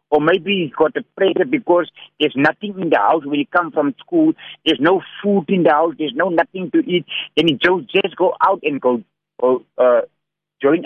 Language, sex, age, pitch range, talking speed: English, male, 60-79, 150-200 Hz, 205 wpm